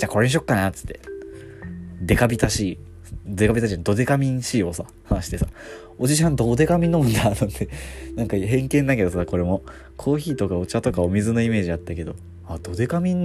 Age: 20-39